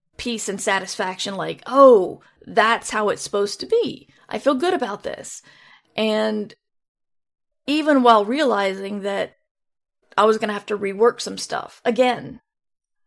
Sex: female